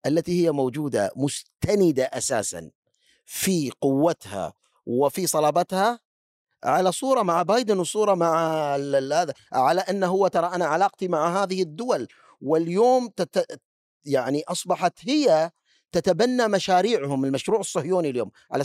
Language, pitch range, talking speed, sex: Arabic, 155-235 Hz, 115 wpm, male